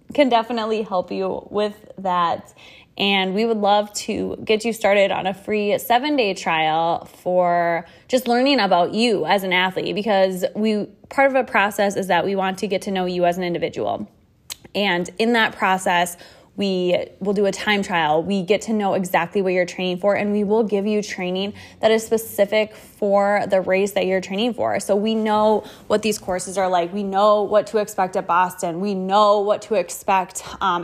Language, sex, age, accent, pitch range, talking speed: English, female, 10-29, American, 190-225 Hz, 195 wpm